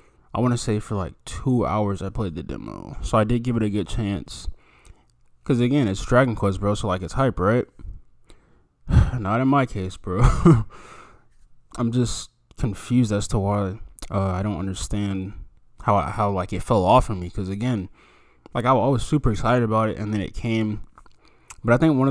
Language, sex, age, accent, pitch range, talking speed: English, male, 20-39, American, 100-125 Hz, 195 wpm